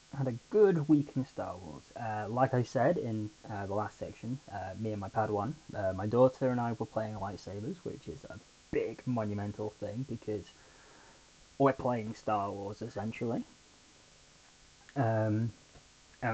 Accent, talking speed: British, 160 wpm